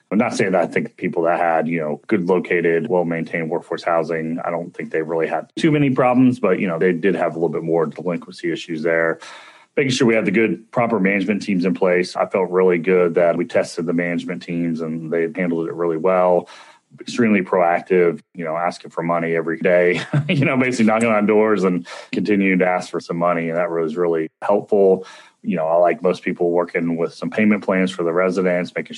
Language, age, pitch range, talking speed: English, 30-49, 85-95 Hz, 220 wpm